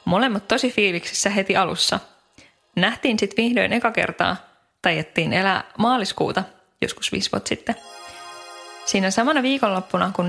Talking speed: 120 wpm